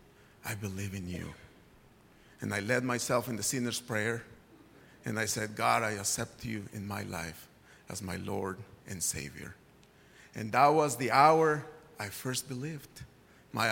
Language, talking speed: English, 155 wpm